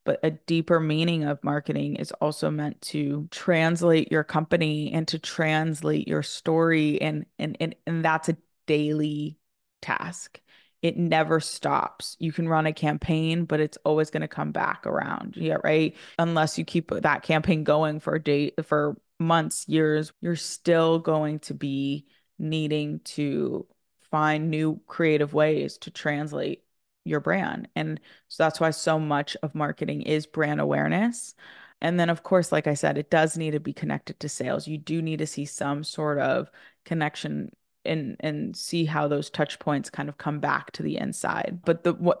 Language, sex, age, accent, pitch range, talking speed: English, female, 20-39, American, 150-165 Hz, 170 wpm